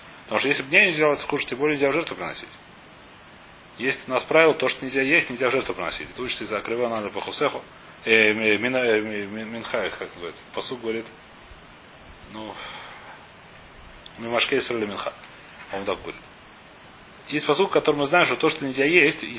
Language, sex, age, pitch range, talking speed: Russian, male, 30-49, 115-150 Hz, 160 wpm